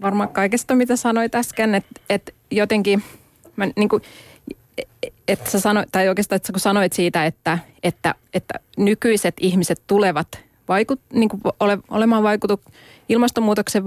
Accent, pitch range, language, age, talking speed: native, 175-215 Hz, Finnish, 20-39, 110 wpm